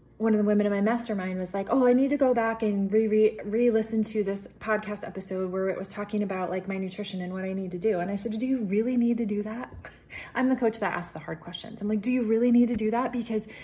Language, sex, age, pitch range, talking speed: English, female, 20-39, 185-225 Hz, 285 wpm